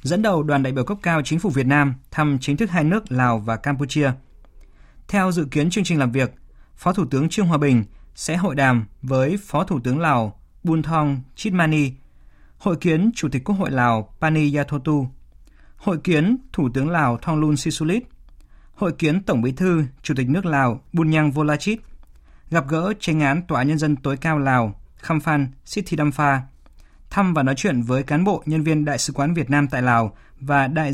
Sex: male